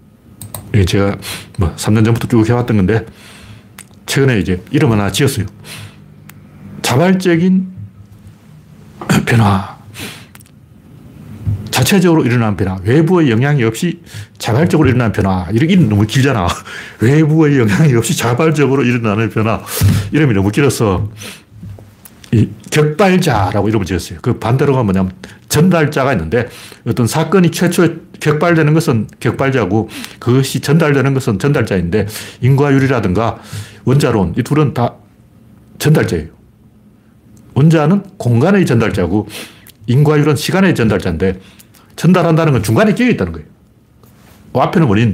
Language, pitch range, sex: Korean, 105-150 Hz, male